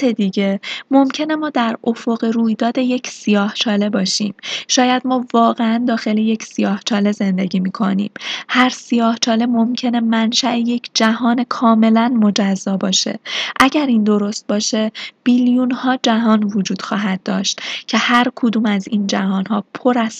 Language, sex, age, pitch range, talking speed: Persian, female, 20-39, 200-240 Hz, 135 wpm